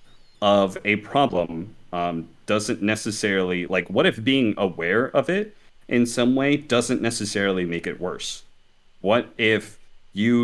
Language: English